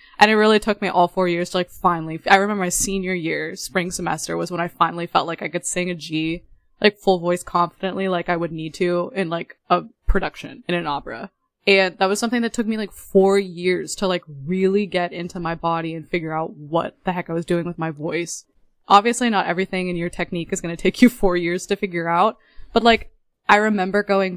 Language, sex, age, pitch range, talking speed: English, female, 20-39, 170-200 Hz, 235 wpm